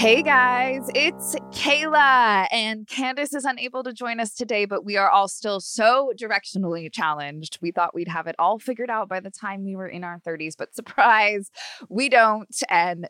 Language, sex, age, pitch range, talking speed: English, female, 20-39, 170-240 Hz, 190 wpm